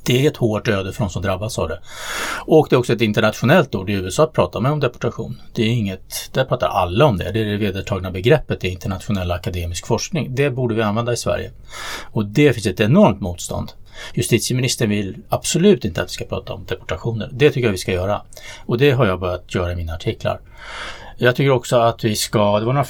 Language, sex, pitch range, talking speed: Swedish, male, 100-135 Hz, 230 wpm